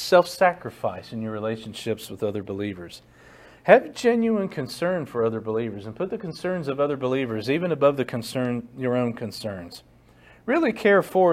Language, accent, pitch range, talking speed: English, American, 115-160 Hz, 160 wpm